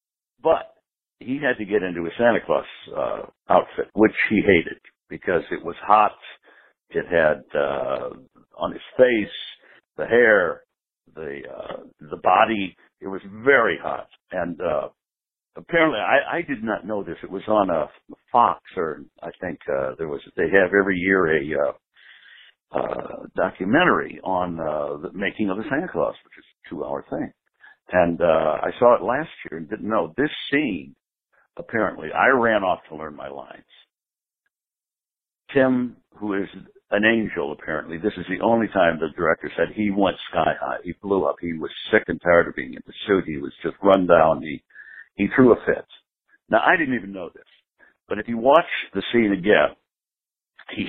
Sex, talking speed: male, 180 wpm